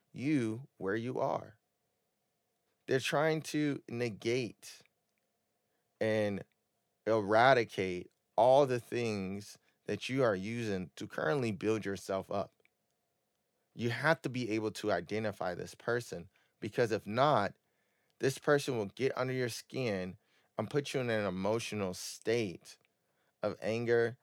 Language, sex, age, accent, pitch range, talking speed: English, male, 20-39, American, 105-130 Hz, 125 wpm